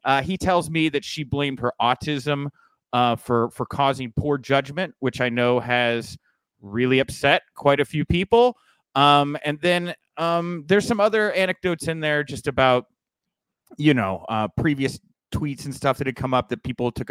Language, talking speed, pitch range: English, 180 wpm, 120-150 Hz